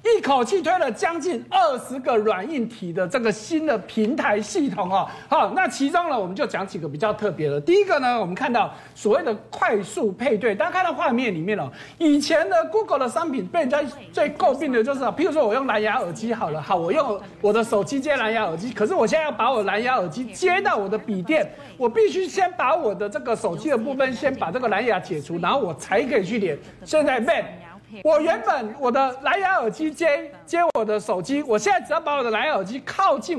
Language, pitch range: Chinese, 210-315 Hz